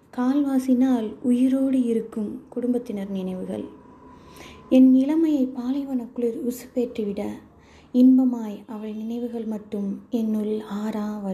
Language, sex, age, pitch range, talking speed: Tamil, female, 20-39, 215-255 Hz, 85 wpm